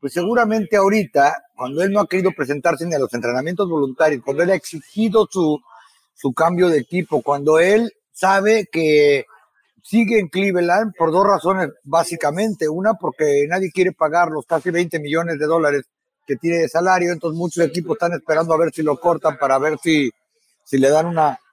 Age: 50-69